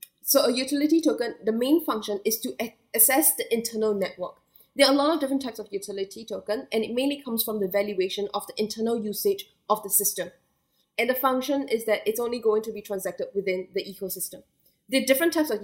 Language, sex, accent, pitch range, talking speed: English, female, Malaysian, 200-235 Hz, 215 wpm